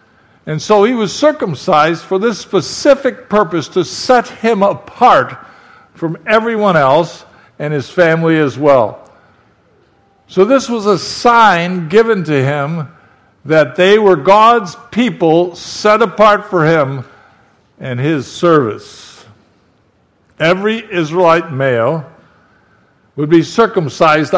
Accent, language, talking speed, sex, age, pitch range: American, English, 115 wpm, male, 60-79, 135-190 Hz